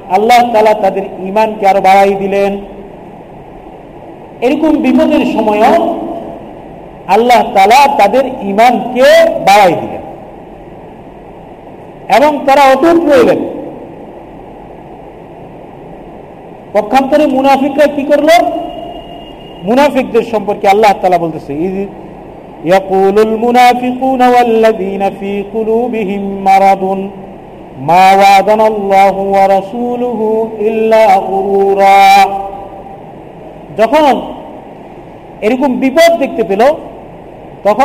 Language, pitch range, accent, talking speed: Bengali, 200-280 Hz, native, 40 wpm